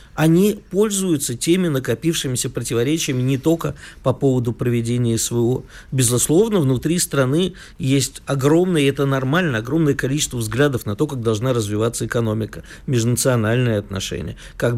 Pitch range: 125-155 Hz